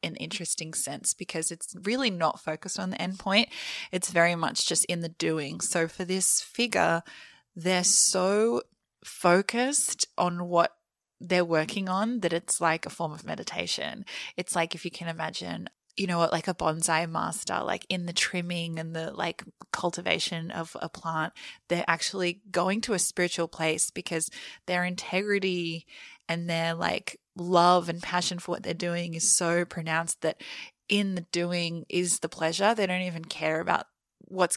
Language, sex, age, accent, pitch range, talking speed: English, female, 20-39, Australian, 165-190 Hz, 170 wpm